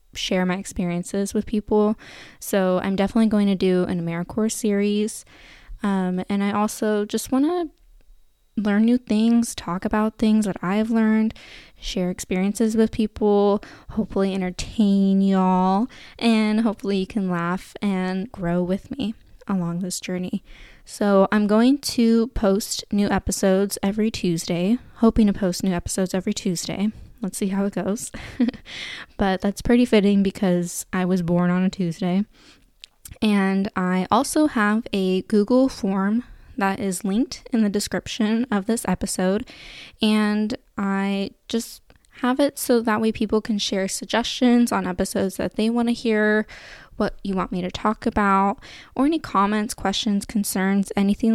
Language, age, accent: English, 10-29, American